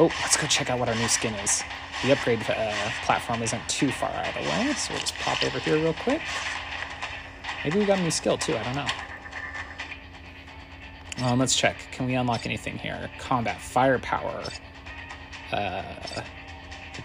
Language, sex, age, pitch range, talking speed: English, male, 30-49, 90-130 Hz, 180 wpm